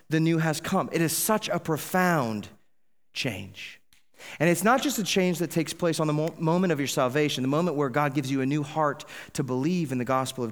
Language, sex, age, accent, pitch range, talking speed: English, male, 30-49, American, 145-195 Hz, 235 wpm